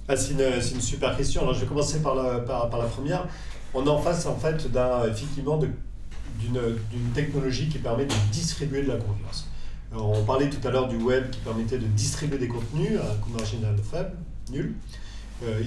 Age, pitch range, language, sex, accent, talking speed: 40-59, 110-140 Hz, French, male, French, 170 wpm